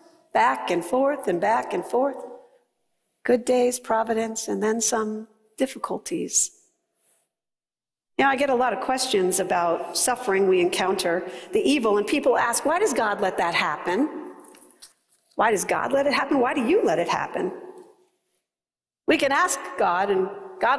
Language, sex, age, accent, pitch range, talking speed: English, female, 50-69, American, 225-340 Hz, 155 wpm